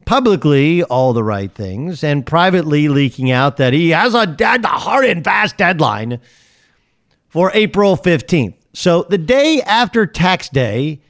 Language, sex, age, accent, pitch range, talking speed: English, male, 50-69, American, 130-170 Hz, 140 wpm